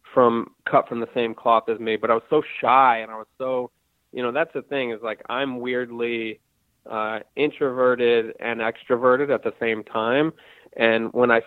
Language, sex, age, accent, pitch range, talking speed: English, male, 20-39, American, 115-125 Hz, 195 wpm